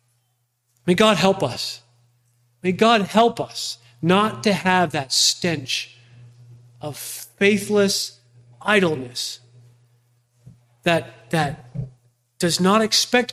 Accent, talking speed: American, 95 wpm